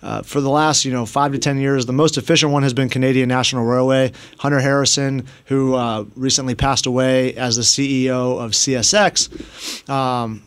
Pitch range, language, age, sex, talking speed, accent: 125-140 Hz, English, 30-49, male, 185 wpm, American